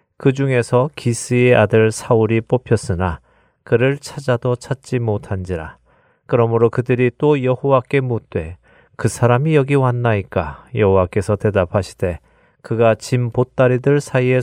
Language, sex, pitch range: Korean, male, 110-130 Hz